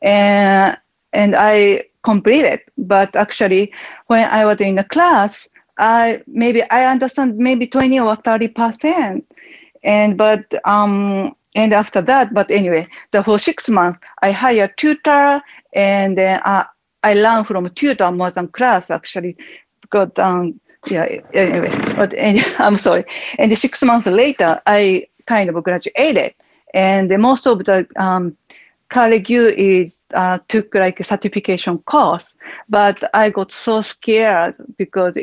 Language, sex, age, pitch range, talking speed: English, female, 40-59, 190-235 Hz, 145 wpm